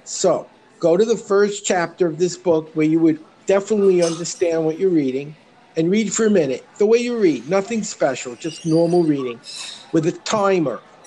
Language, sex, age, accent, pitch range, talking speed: English, male, 50-69, American, 165-220 Hz, 185 wpm